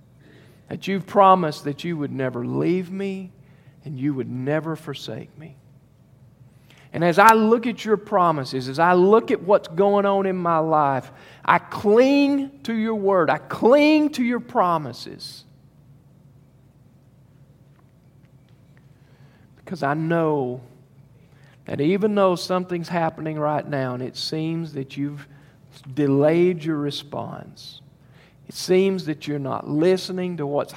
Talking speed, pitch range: 130 wpm, 135-170 Hz